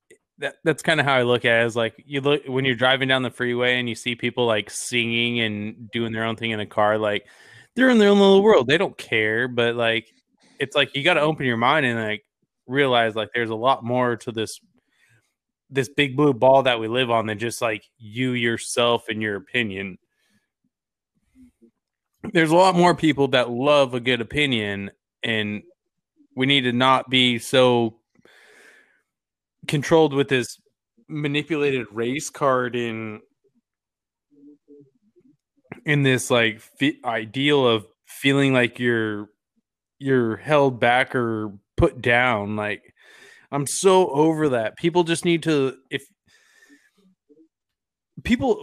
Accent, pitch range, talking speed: American, 115-155 Hz, 155 wpm